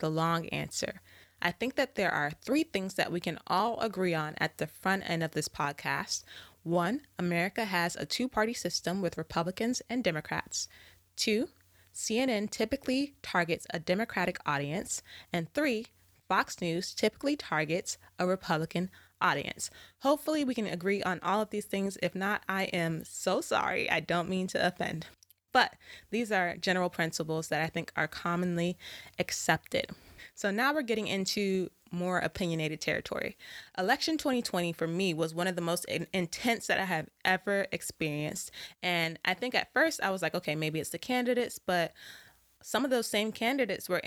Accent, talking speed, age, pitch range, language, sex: American, 165 wpm, 20-39, 170-215 Hz, English, female